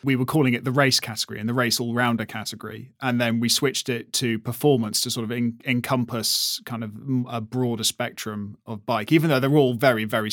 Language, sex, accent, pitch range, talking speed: English, male, British, 115-135 Hz, 220 wpm